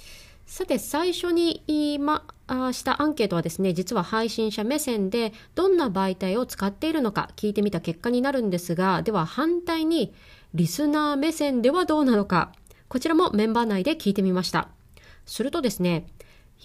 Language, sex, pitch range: Japanese, female, 185-290 Hz